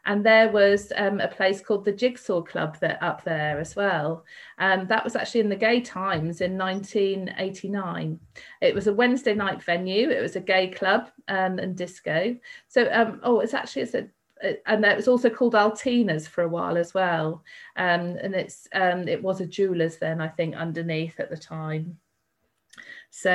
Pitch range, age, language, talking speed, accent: 170-210 Hz, 40-59, English, 195 wpm, British